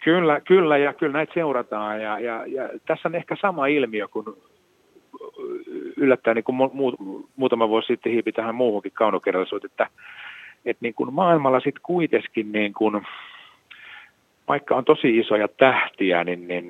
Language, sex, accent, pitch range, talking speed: Finnish, male, native, 105-155 Hz, 130 wpm